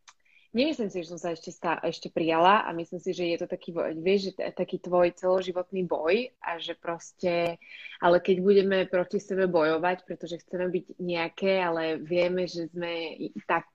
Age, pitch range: 20-39, 175-205 Hz